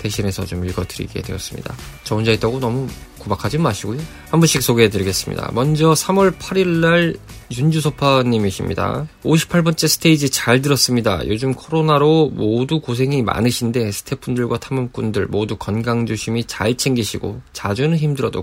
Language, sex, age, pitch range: Korean, male, 20-39, 110-140 Hz